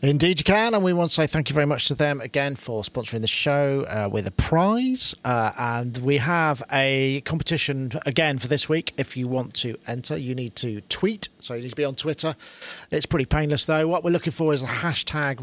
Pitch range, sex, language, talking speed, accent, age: 135-175 Hz, male, English, 235 wpm, British, 40-59